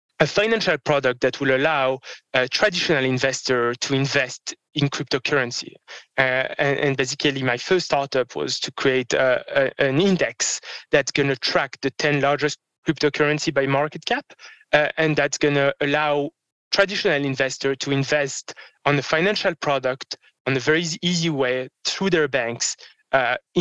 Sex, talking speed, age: male, 150 wpm, 20-39